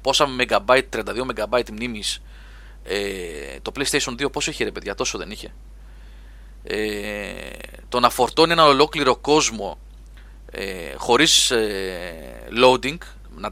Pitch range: 105-150 Hz